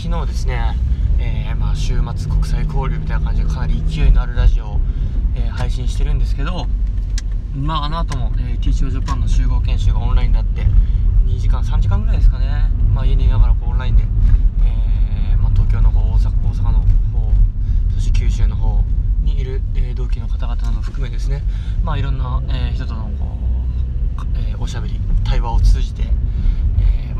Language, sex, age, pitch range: Japanese, male, 20-39, 80-100 Hz